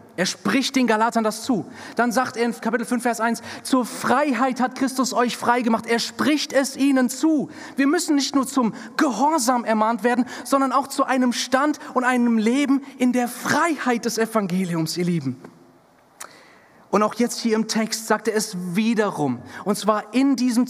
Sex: male